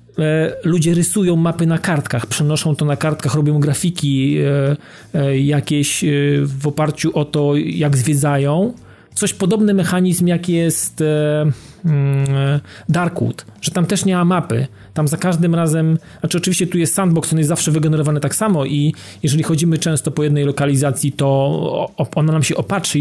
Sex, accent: male, native